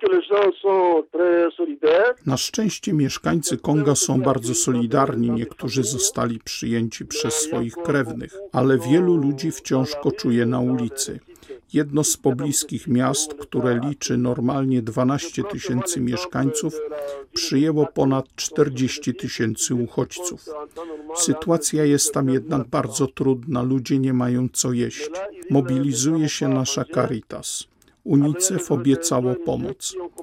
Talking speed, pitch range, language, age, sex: 105 wpm, 130-160 Hz, Polish, 50-69, male